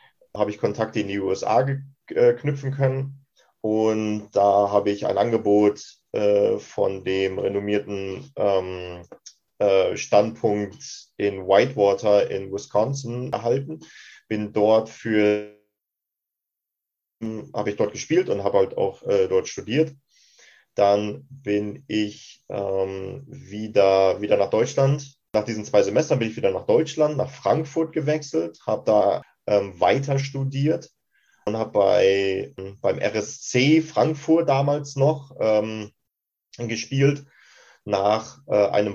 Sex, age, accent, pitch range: male, 30-49, German, 105-140 Hz